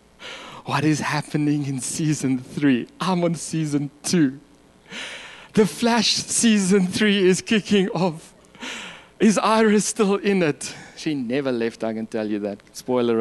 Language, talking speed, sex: English, 140 wpm, male